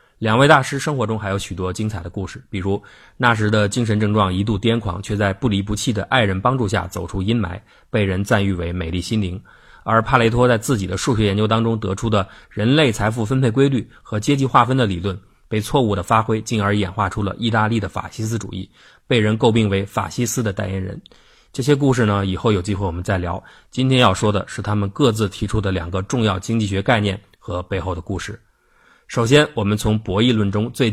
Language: Chinese